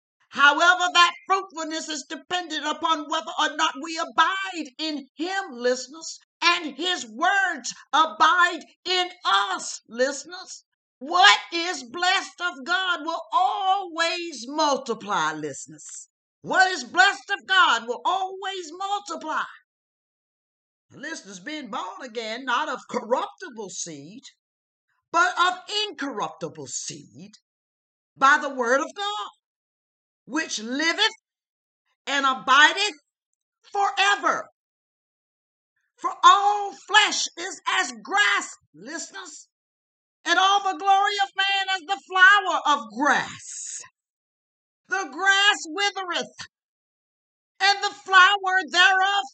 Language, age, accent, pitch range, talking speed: English, 50-69, American, 285-385 Hz, 105 wpm